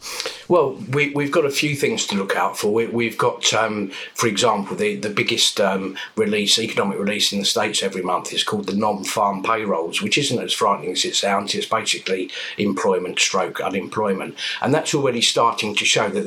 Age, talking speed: 50-69, 185 wpm